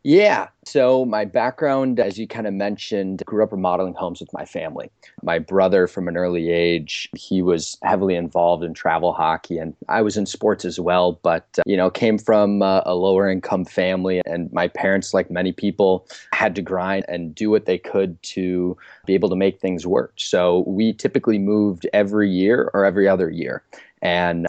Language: English